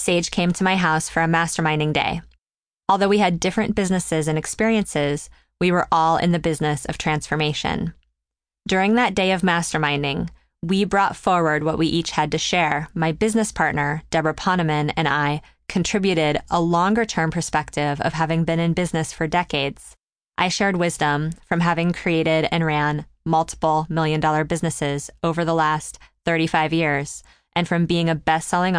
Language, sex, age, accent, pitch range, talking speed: English, female, 20-39, American, 155-175 Hz, 165 wpm